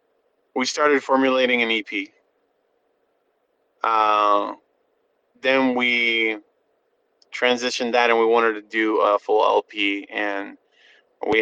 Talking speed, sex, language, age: 105 wpm, male, English, 20-39